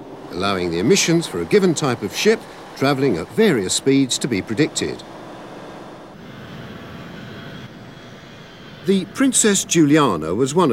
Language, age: English, 50-69